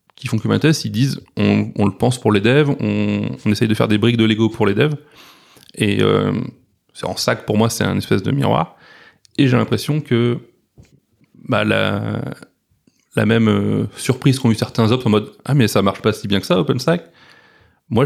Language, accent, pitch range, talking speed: French, French, 105-125 Hz, 220 wpm